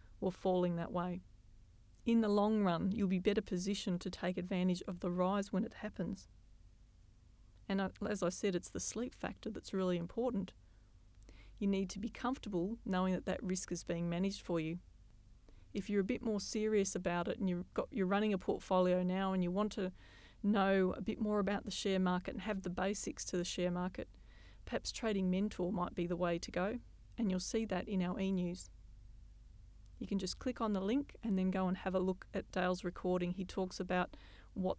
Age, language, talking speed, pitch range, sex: 40-59, English, 205 wpm, 180-210 Hz, female